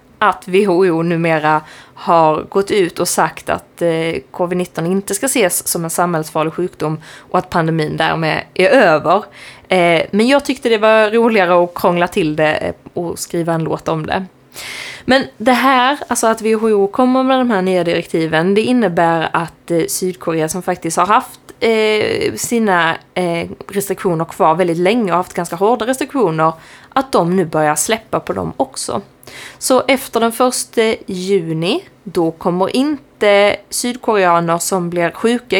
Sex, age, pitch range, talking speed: female, 20-39, 170-225 Hz, 155 wpm